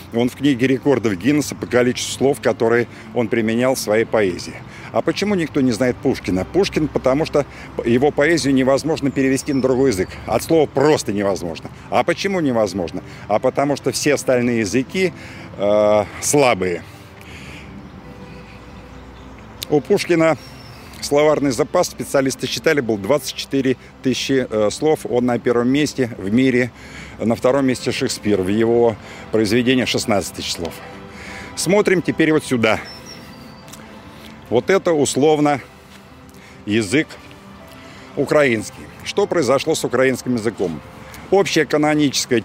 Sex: male